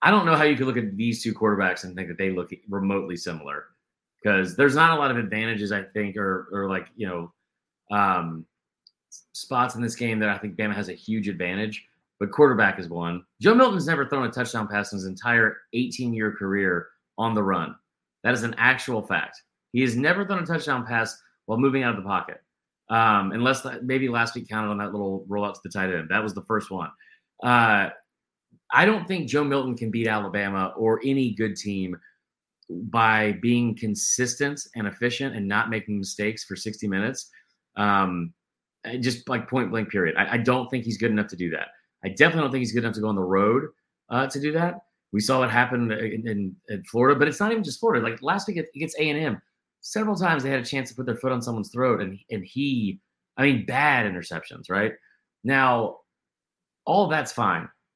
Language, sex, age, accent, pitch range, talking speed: English, male, 30-49, American, 100-130 Hz, 210 wpm